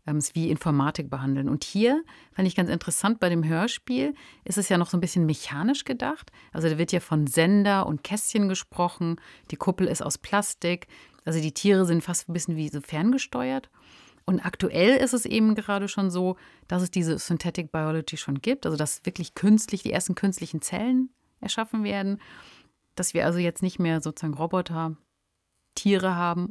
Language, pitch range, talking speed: German, 155-195 Hz, 180 wpm